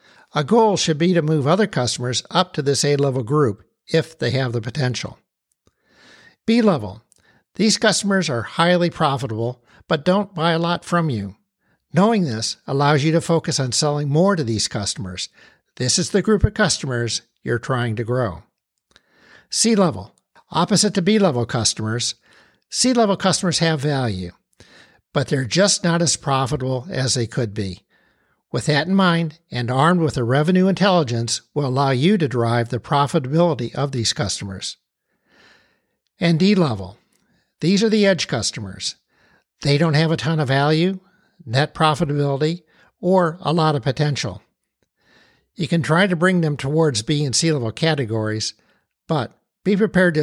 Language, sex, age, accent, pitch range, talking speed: English, male, 60-79, American, 125-175 Hz, 155 wpm